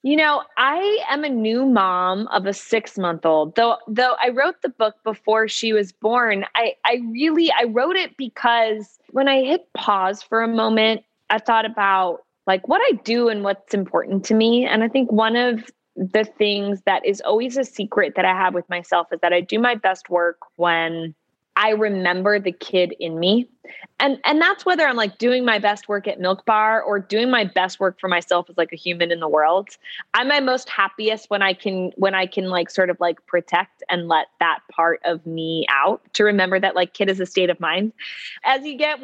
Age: 20-39